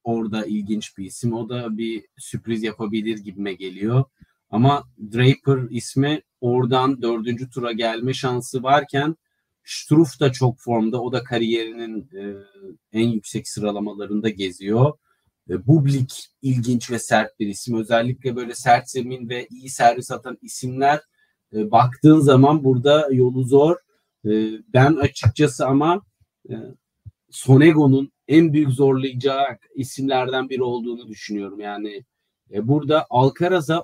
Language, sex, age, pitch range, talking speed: Turkish, male, 40-59, 115-145 Hz, 125 wpm